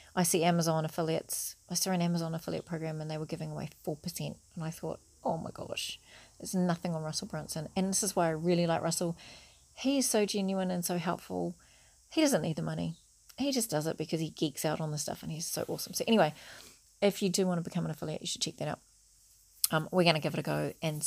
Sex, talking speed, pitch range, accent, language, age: female, 245 wpm, 160-190 Hz, Australian, English, 30-49